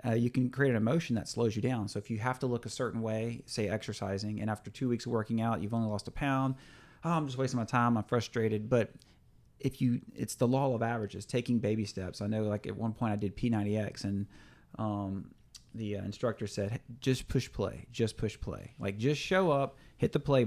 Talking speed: 230 wpm